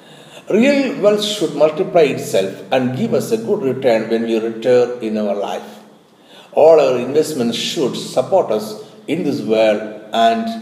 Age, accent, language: 60-79, native, Malayalam